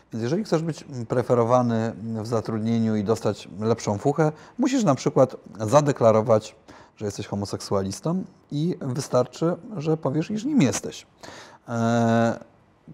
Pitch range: 110-130 Hz